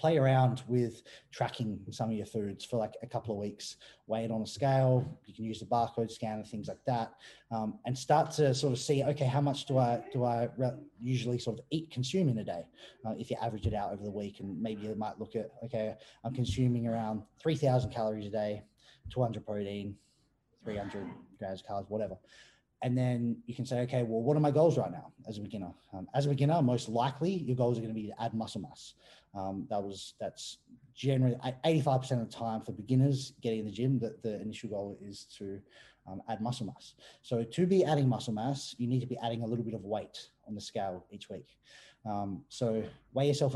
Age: 20-39